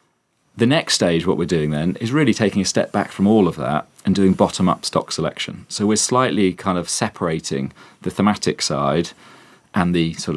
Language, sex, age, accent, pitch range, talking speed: English, male, 40-59, British, 85-105 Hz, 195 wpm